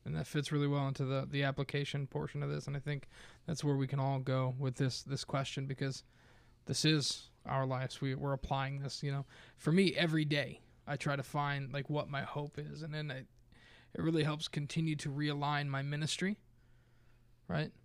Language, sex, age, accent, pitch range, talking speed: English, male, 20-39, American, 130-155 Hz, 205 wpm